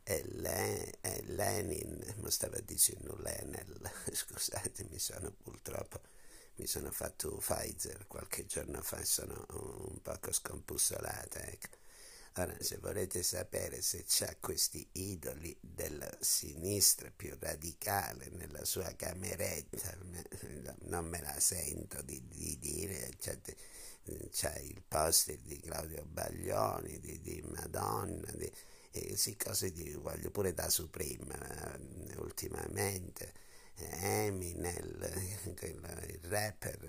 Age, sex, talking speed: 50-69, male, 115 wpm